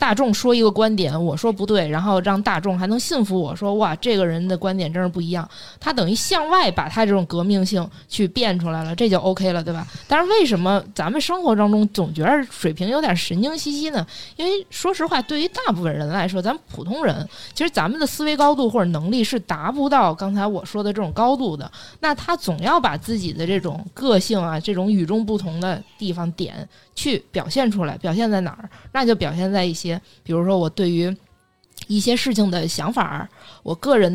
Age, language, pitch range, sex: 20-39, Chinese, 175-240 Hz, female